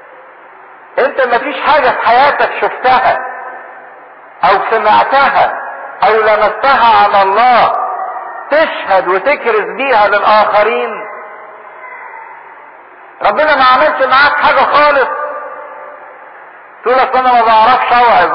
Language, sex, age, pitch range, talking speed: English, male, 50-69, 210-285 Hz, 85 wpm